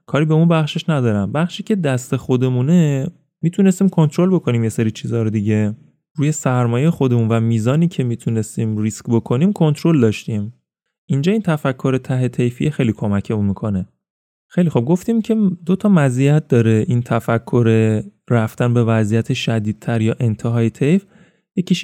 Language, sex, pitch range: Persian, male, 115-170 Hz